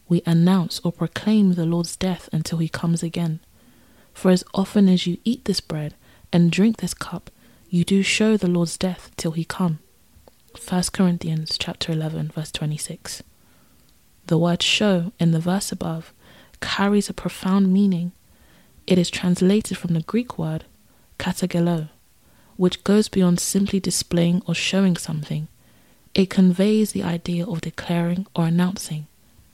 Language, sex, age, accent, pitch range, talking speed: English, female, 20-39, British, 165-190 Hz, 150 wpm